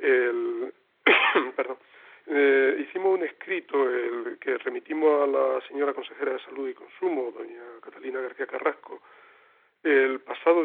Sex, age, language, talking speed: male, 40-59, Spanish, 130 wpm